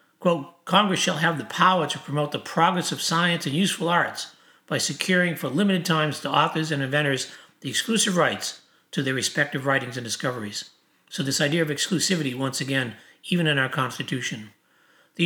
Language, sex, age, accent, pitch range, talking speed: English, male, 60-79, American, 135-165 Hz, 175 wpm